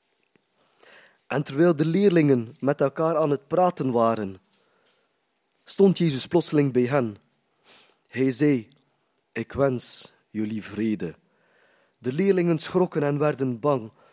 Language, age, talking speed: Dutch, 20-39, 115 wpm